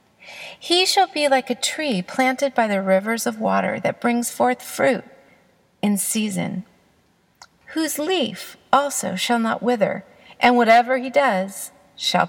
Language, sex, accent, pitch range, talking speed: English, female, American, 195-265 Hz, 140 wpm